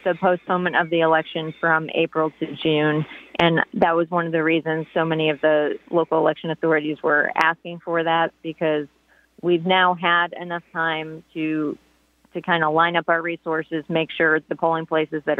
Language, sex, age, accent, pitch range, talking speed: English, female, 30-49, American, 160-180 Hz, 185 wpm